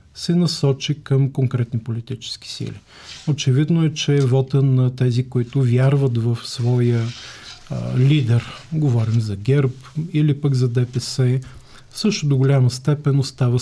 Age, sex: 40-59, male